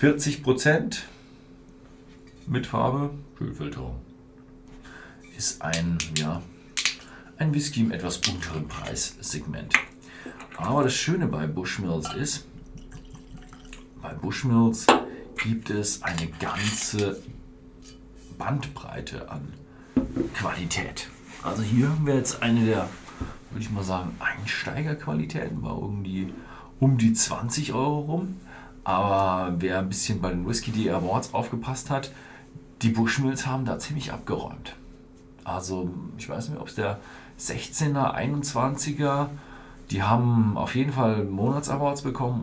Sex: male